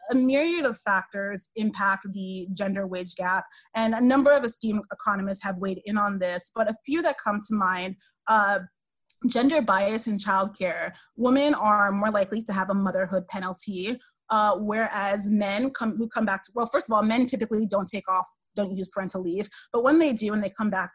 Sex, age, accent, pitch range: female, 30-49, American, 190-225 Hz